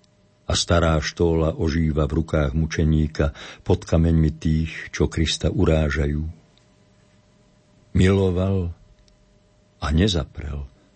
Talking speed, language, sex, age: 90 wpm, Slovak, male, 60-79